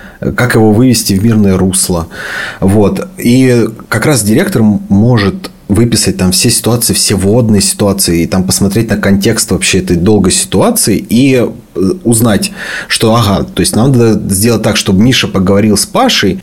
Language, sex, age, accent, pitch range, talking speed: Russian, male, 30-49, native, 100-120 Hz, 155 wpm